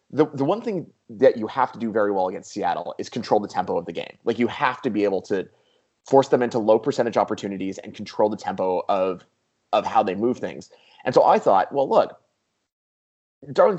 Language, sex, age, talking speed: English, male, 20-39, 215 wpm